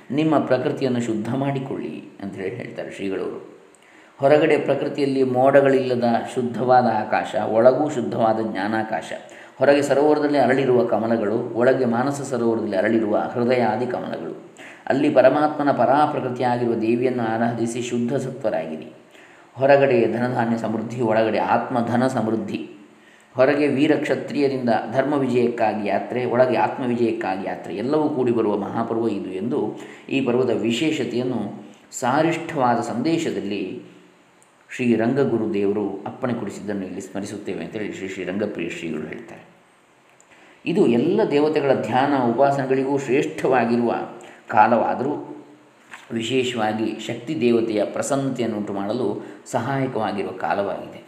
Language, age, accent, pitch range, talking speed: Kannada, 20-39, native, 110-135 Hz, 95 wpm